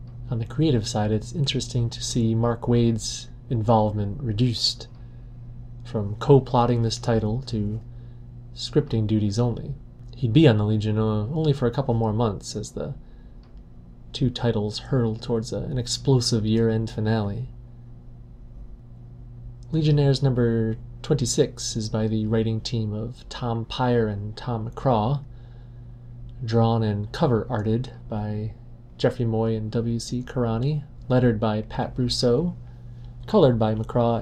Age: 30-49